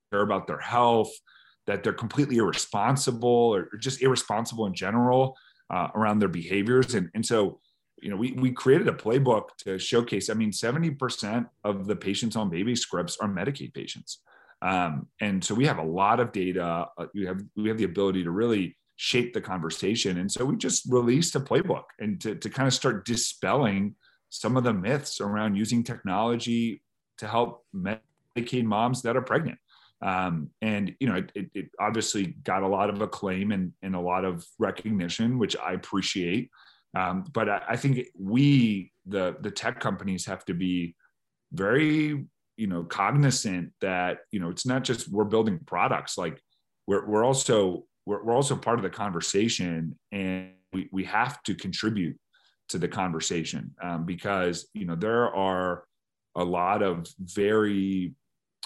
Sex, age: male, 30-49